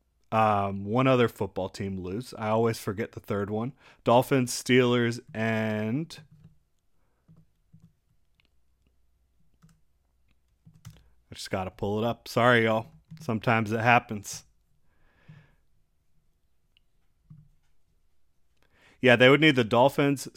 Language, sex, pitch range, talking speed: English, male, 100-120 Hz, 95 wpm